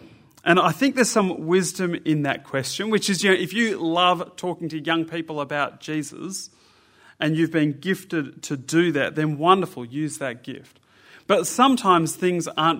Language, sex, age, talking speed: English, male, 30-49, 180 wpm